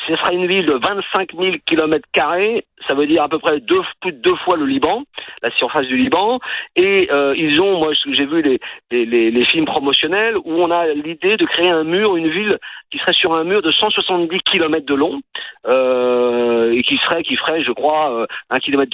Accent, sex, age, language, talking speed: French, male, 50-69, French, 220 wpm